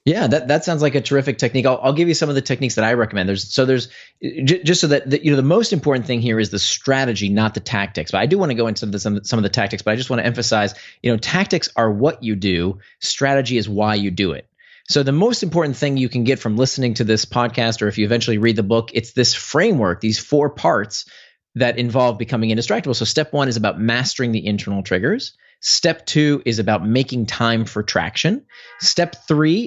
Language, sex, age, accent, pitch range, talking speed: English, male, 30-49, American, 110-145 Hz, 245 wpm